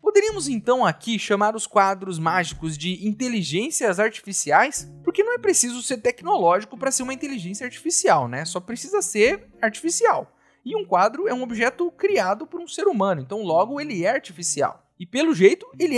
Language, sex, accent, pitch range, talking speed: Portuguese, male, Brazilian, 195-320 Hz, 175 wpm